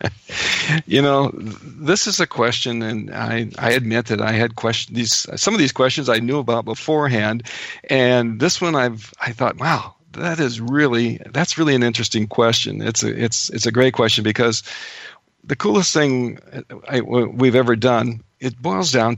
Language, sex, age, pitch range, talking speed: English, male, 50-69, 115-130 Hz, 175 wpm